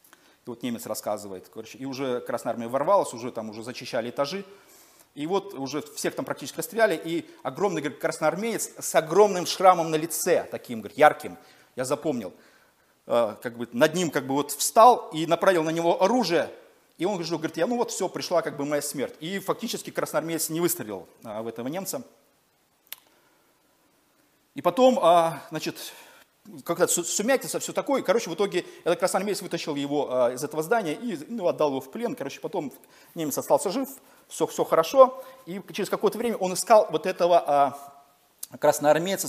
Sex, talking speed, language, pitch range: male, 170 wpm, Russian, 140-200 Hz